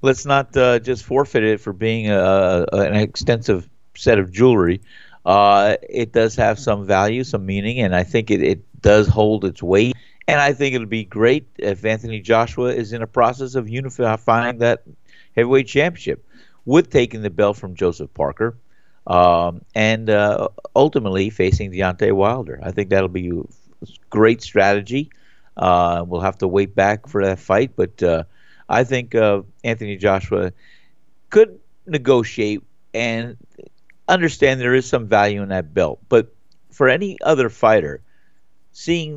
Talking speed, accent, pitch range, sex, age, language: 160 wpm, American, 100-125 Hz, male, 50-69, English